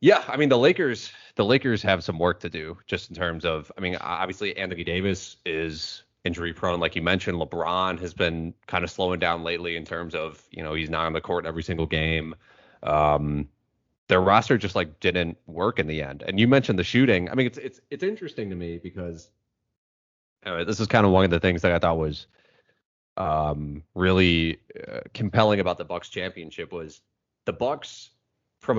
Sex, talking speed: male, 200 wpm